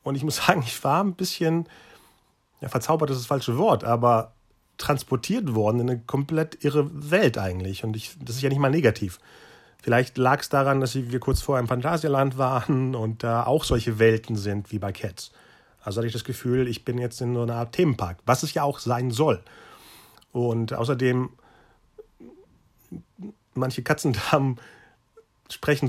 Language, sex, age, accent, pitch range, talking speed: German, male, 40-59, German, 115-145 Hz, 180 wpm